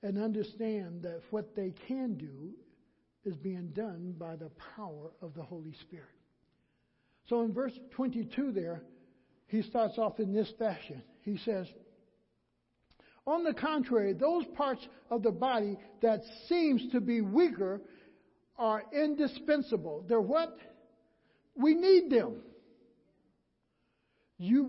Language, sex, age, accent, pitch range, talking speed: English, male, 60-79, American, 210-280 Hz, 125 wpm